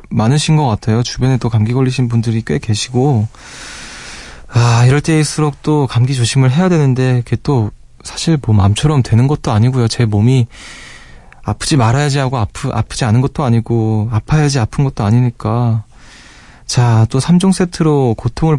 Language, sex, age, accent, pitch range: Korean, male, 20-39, native, 110-145 Hz